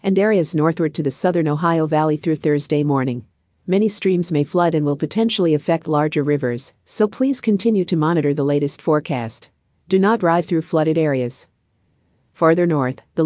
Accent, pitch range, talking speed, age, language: American, 145-175 Hz, 170 wpm, 50-69, English